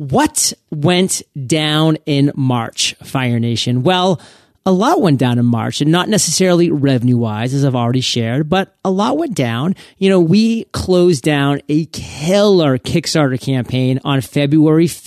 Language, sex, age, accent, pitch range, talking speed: English, male, 30-49, American, 130-160 Hz, 150 wpm